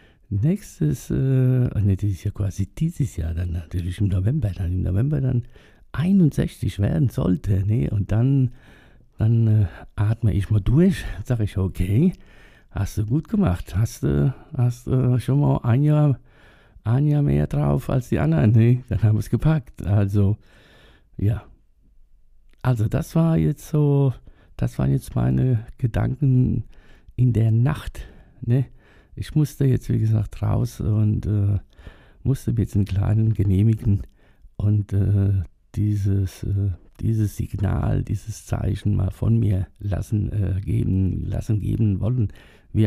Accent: German